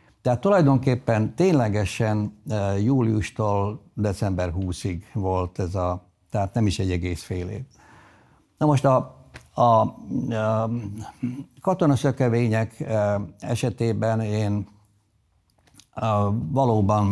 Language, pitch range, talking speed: Hungarian, 100-120 Hz, 90 wpm